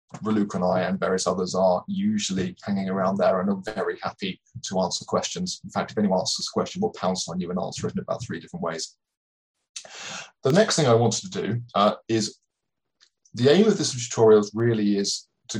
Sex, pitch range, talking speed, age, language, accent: male, 100-145 Hz, 210 wpm, 20-39, English, British